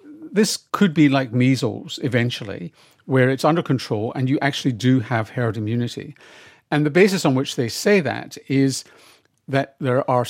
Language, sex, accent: English, male, British